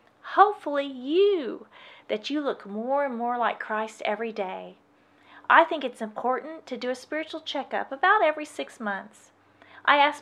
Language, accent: English, American